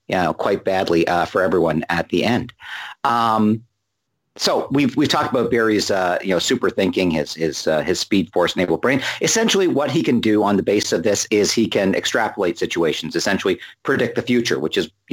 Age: 50-69